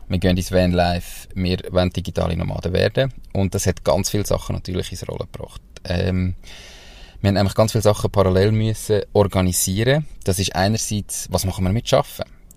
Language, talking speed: German, 175 wpm